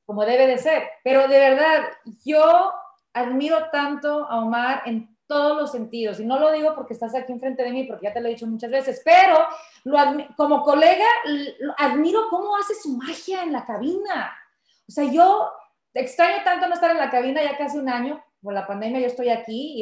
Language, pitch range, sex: Spanish, 260-335 Hz, female